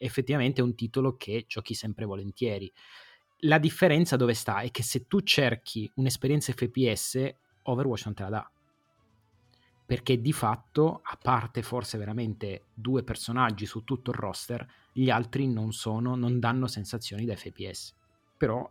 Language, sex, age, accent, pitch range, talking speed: Italian, male, 30-49, native, 110-130 Hz, 150 wpm